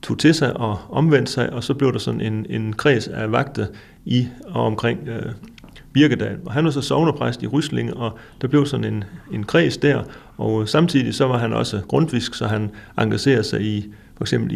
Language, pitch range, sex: Danish, 105-130 Hz, male